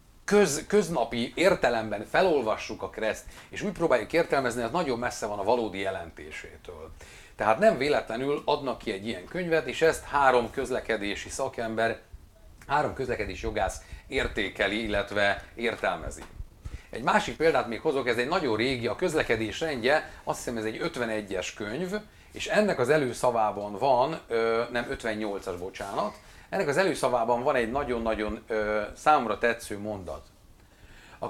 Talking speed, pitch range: 140 wpm, 105-150 Hz